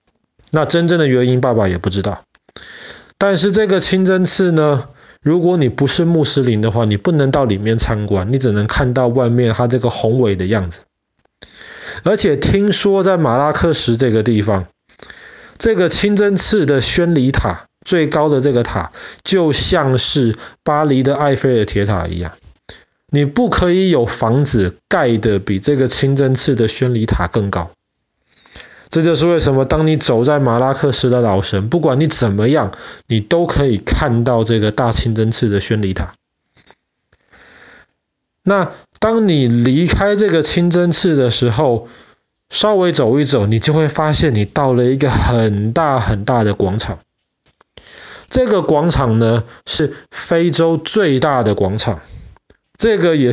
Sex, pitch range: male, 115-160 Hz